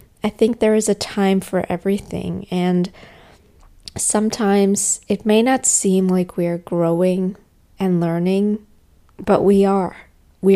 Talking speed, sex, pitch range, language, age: 135 wpm, female, 175-205 Hz, English, 20-39